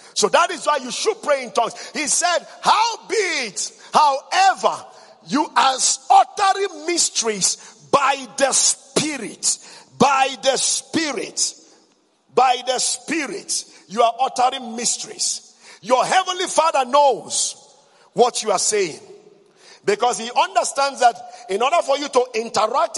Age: 50-69